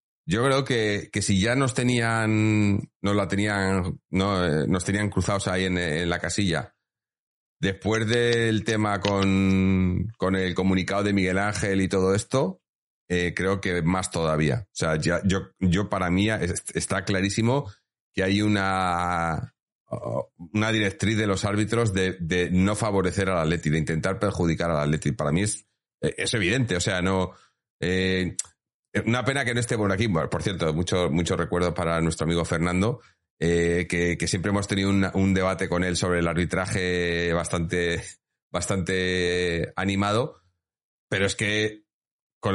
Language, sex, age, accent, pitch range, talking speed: Spanish, male, 30-49, Spanish, 85-105 Hz, 160 wpm